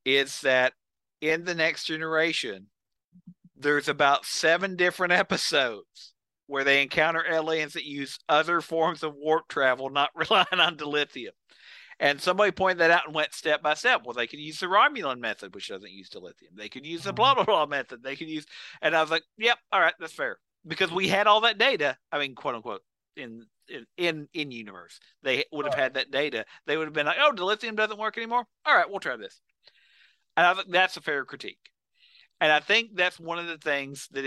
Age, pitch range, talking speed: 50-69, 135-175 Hz, 200 wpm